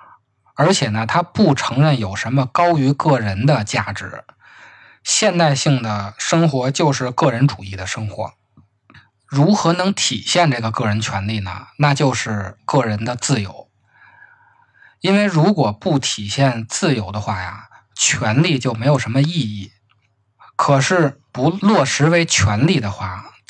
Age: 20-39